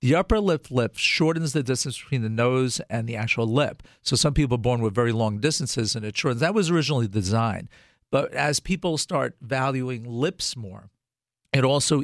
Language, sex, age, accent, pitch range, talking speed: English, male, 50-69, American, 115-145 Hz, 195 wpm